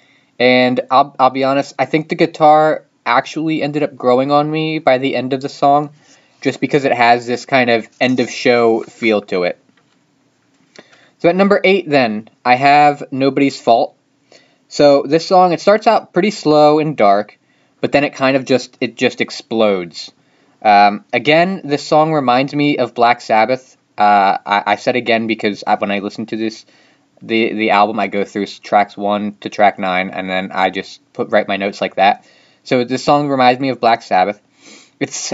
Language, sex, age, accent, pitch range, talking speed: English, male, 20-39, American, 110-145 Hz, 190 wpm